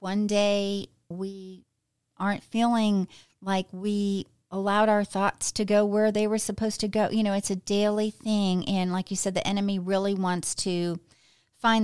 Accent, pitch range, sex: American, 180-220 Hz, female